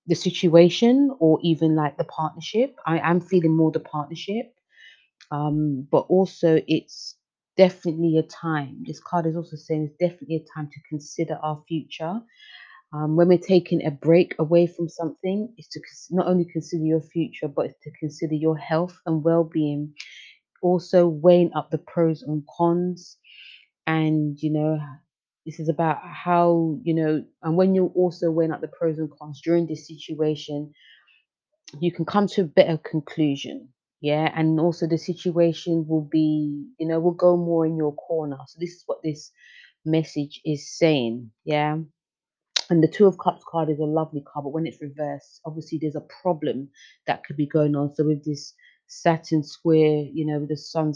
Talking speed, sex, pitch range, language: 175 wpm, female, 150-170 Hz, English